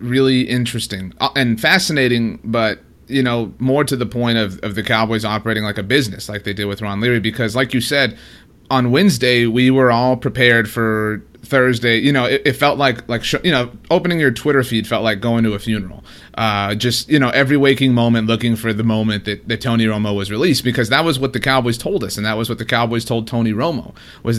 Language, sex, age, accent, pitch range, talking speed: English, male, 30-49, American, 110-135 Hz, 225 wpm